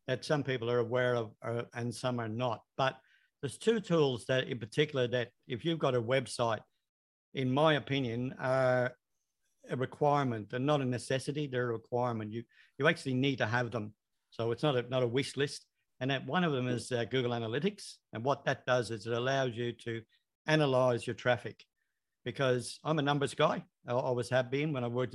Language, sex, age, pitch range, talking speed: English, male, 60-79, 120-140 Hz, 200 wpm